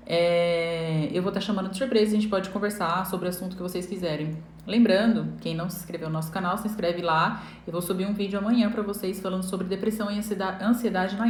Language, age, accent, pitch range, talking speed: Portuguese, 10-29, Brazilian, 185-240 Hz, 225 wpm